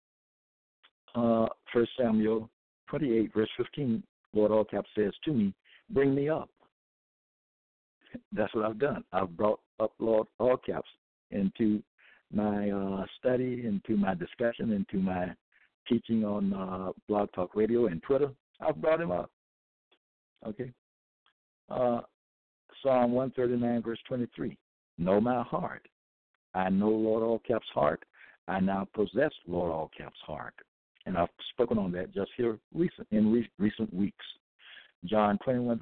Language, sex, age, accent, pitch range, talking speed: English, male, 60-79, American, 95-125 Hz, 145 wpm